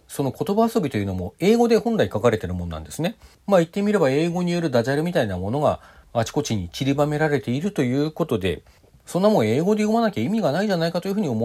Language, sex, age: Japanese, male, 40-59